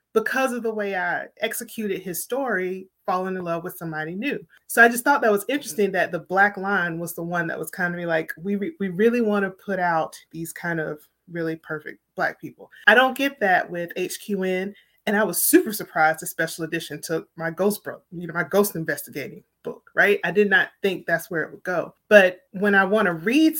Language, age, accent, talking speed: English, 30-49, American, 220 wpm